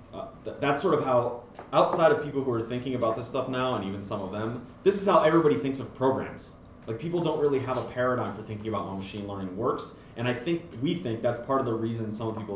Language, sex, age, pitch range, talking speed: English, male, 30-49, 110-150 Hz, 255 wpm